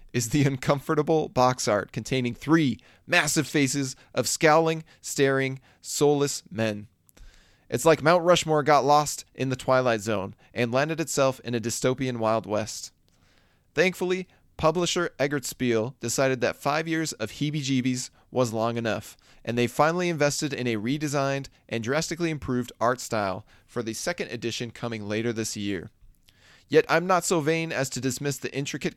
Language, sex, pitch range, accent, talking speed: English, male, 115-150 Hz, American, 155 wpm